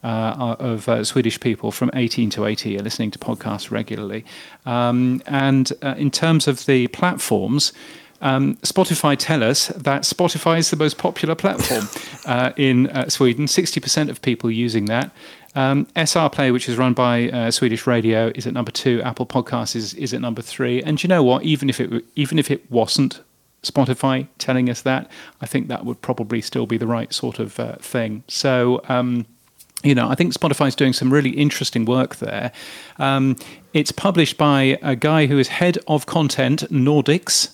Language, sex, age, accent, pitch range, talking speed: English, male, 40-59, British, 120-150 Hz, 190 wpm